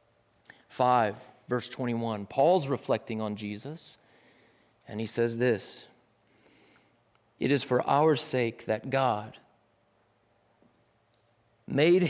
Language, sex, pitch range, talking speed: English, male, 115-140 Hz, 95 wpm